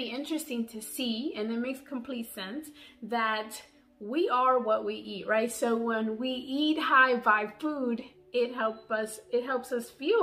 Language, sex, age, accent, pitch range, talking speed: English, female, 20-39, American, 205-275 Hz, 165 wpm